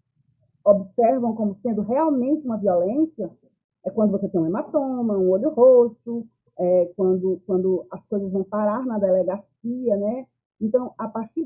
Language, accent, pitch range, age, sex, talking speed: Portuguese, Brazilian, 200-255 Hz, 40-59, female, 145 wpm